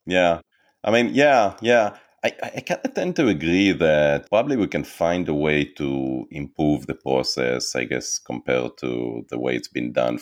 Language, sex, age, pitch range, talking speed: English, male, 30-49, 65-90 Hz, 170 wpm